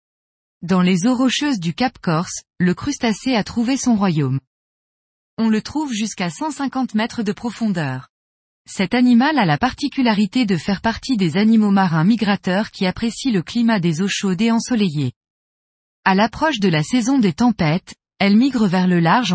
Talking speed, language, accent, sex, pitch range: 170 wpm, French, French, female, 180-245 Hz